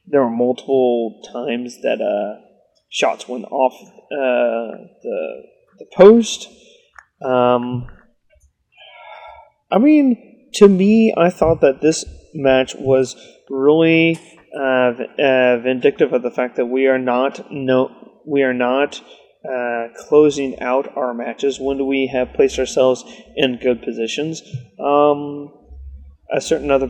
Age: 30-49